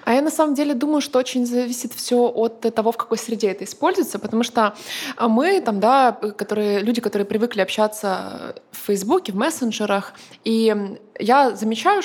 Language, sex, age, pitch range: Russian, female, 20-39, 200-245 Hz